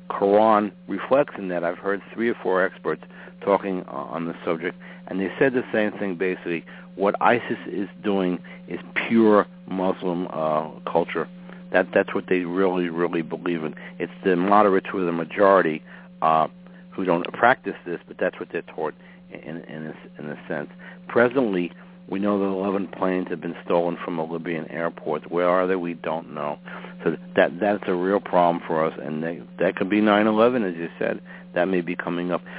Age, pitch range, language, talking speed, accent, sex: 60-79, 85-105 Hz, English, 190 wpm, American, male